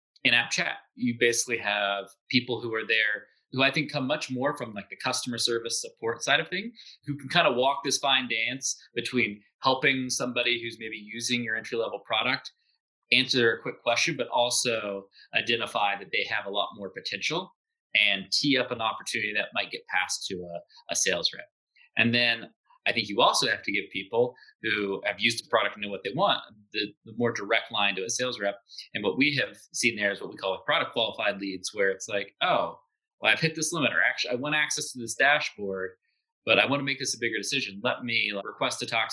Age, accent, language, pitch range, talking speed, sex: 30-49, American, English, 105-150 Hz, 220 wpm, male